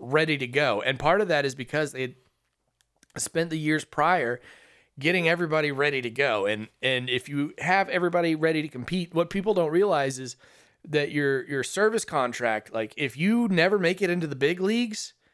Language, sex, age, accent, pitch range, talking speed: English, male, 30-49, American, 125-155 Hz, 190 wpm